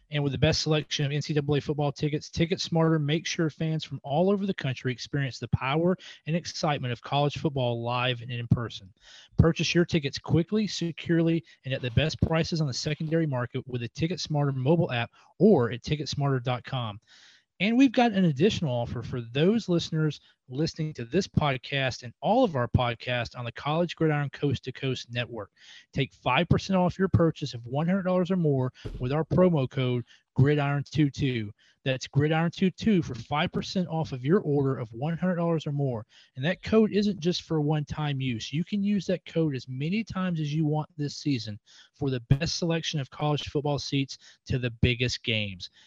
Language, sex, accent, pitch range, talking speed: English, male, American, 130-165 Hz, 180 wpm